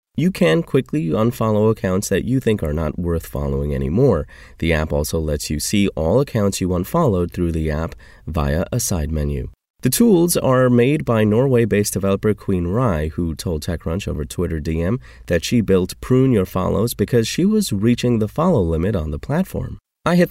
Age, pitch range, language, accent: 30-49, 80-115 Hz, English, American